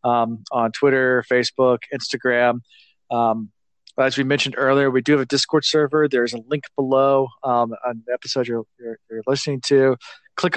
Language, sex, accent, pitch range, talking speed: English, male, American, 115-135 Hz, 170 wpm